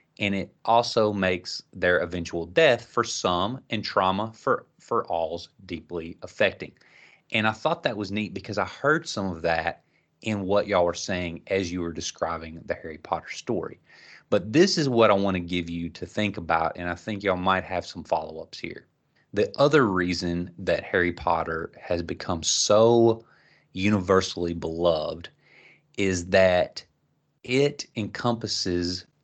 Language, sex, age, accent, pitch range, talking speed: English, male, 30-49, American, 85-110 Hz, 160 wpm